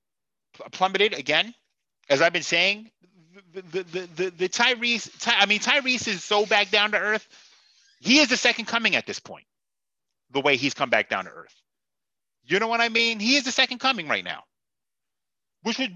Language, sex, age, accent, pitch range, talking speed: English, male, 30-49, American, 135-215 Hz, 190 wpm